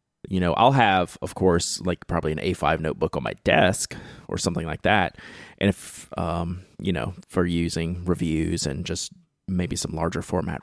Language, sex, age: English, male, 20-39